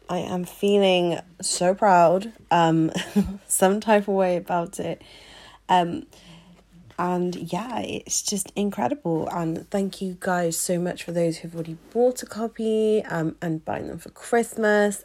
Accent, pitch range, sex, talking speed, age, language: British, 180-225 Hz, female, 150 wpm, 30-49, English